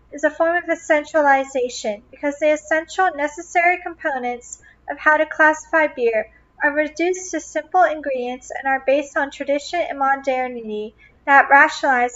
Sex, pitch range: female, 255-315 Hz